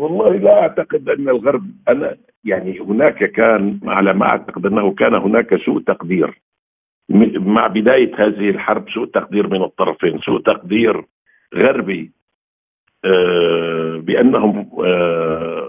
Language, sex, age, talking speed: Arabic, male, 50-69, 110 wpm